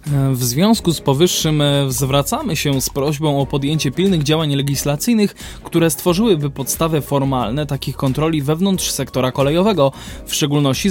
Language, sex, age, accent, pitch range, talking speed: Polish, male, 20-39, native, 150-190 Hz, 130 wpm